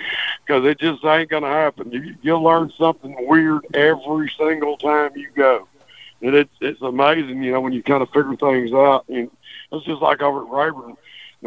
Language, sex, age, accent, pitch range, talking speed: English, male, 60-79, American, 135-160 Hz, 195 wpm